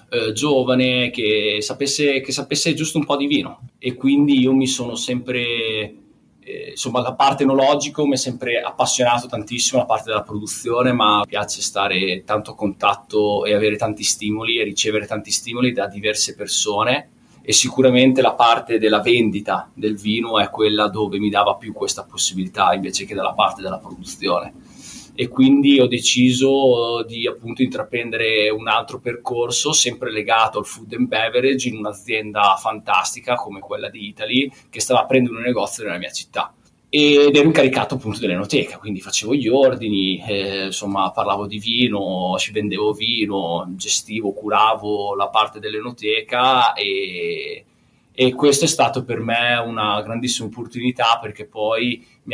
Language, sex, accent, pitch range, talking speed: Italian, male, native, 105-130 Hz, 155 wpm